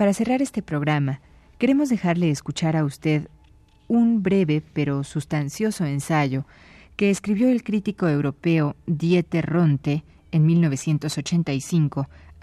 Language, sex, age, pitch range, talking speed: Spanish, female, 40-59, 135-175 Hz, 110 wpm